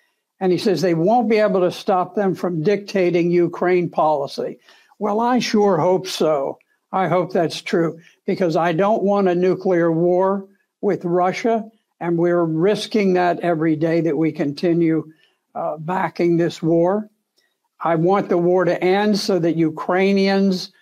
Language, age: English, 60-79